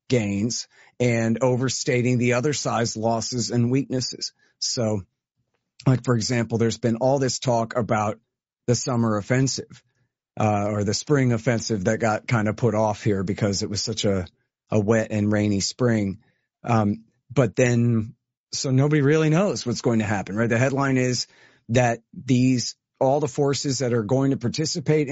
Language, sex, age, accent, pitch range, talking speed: English, male, 40-59, American, 115-135 Hz, 165 wpm